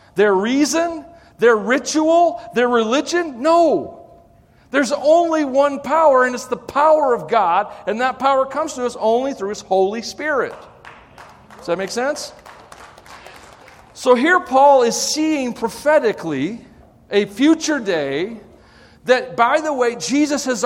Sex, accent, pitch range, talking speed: male, American, 185-285 Hz, 135 wpm